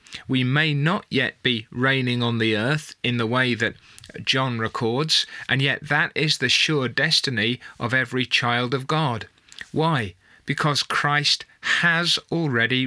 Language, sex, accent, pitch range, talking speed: English, male, British, 115-150 Hz, 150 wpm